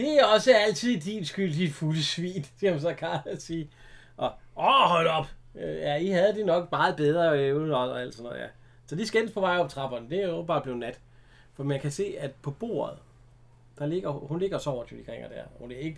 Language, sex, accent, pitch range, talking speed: Danish, male, native, 125-180 Hz, 235 wpm